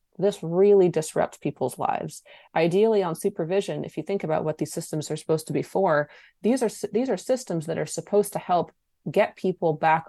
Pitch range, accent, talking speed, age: 150-190 Hz, American, 195 wpm, 30-49